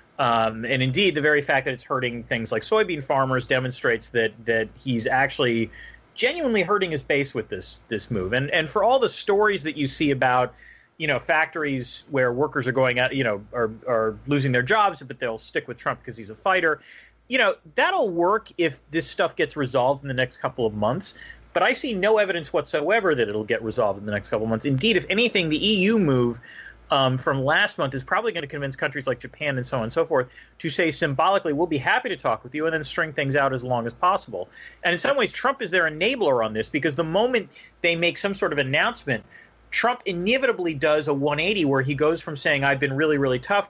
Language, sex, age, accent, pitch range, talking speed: English, male, 30-49, American, 125-160 Hz, 230 wpm